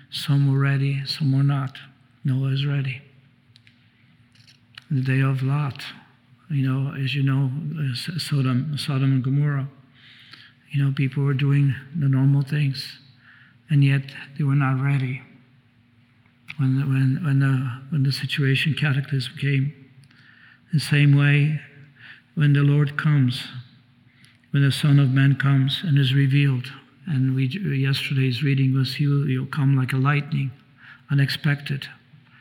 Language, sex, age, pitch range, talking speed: English, male, 50-69, 130-140 Hz, 135 wpm